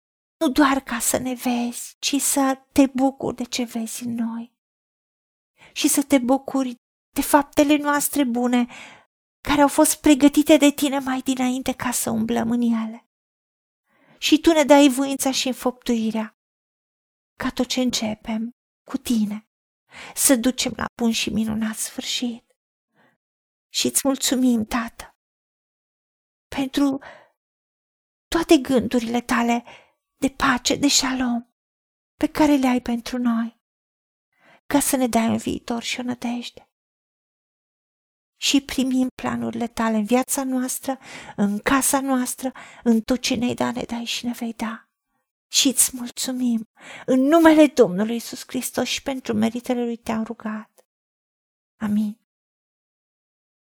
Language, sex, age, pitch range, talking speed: Romanian, female, 40-59, 230-275 Hz, 135 wpm